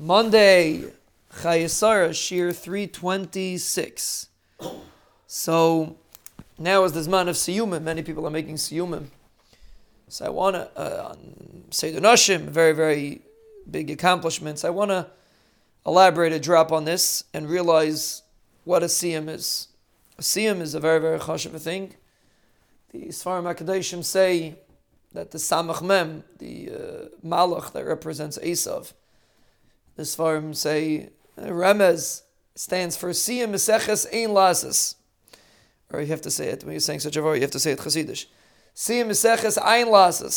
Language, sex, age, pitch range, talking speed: English, male, 30-49, 160-195 Hz, 130 wpm